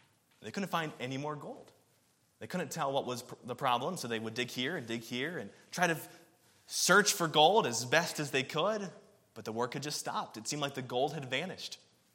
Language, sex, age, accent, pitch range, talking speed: English, male, 20-39, American, 120-165 Hz, 220 wpm